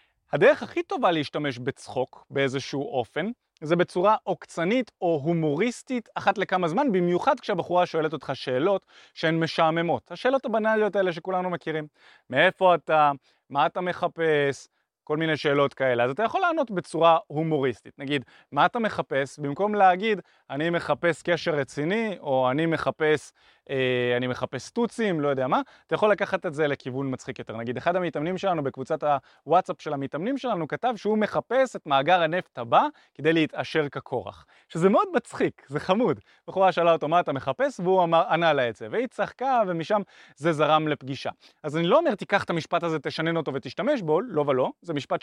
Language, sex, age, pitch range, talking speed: Hebrew, male, 20-39, 145-205 Hz, 165 wpm